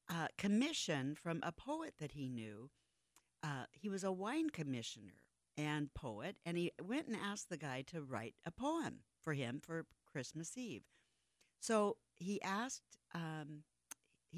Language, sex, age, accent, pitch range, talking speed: English, female, 60-79, American, 130-200 Hz, 150 wpm